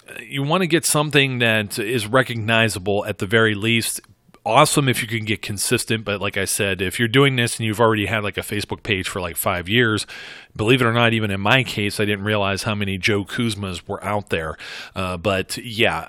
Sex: male